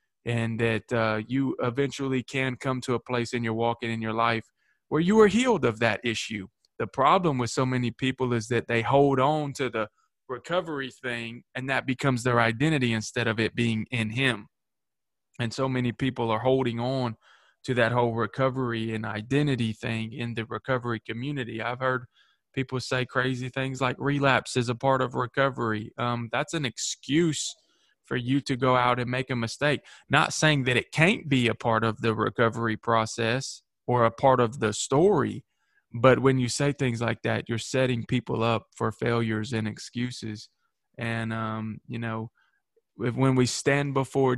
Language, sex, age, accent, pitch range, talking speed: English, male, 20-39, American, 115-130 Hz, 185 wpm